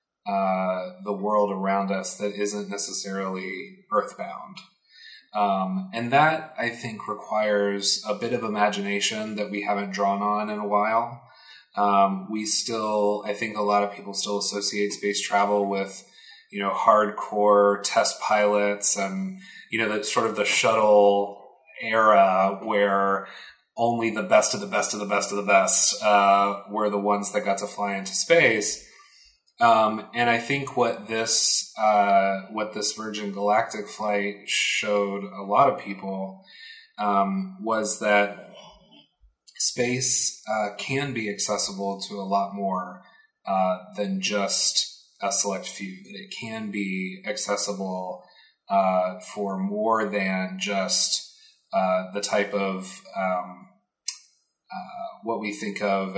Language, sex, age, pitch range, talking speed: English, male, 30-49, 100-110 Hz, 140 wpm